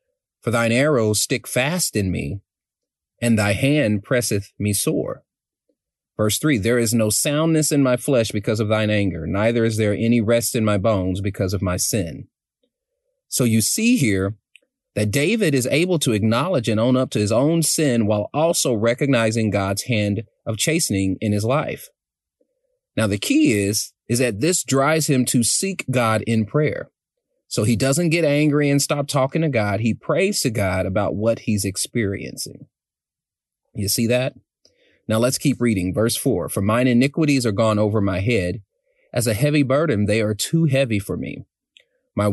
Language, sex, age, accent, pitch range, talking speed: English, male, 30-49, American, 105-140 Hz, 175 wpm